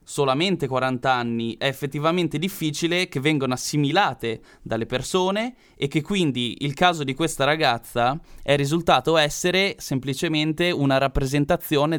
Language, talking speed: Italian, 125 wpm